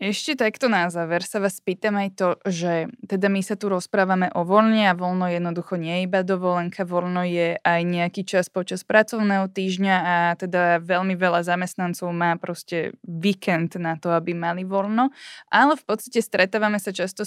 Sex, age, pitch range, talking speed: female, 20-39, 180-210 Hz, 175 wpm